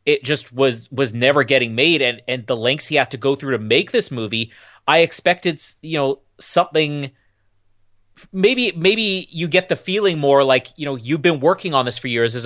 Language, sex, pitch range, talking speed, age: English, male, 120-145 Hz, 205 wpm, 30-49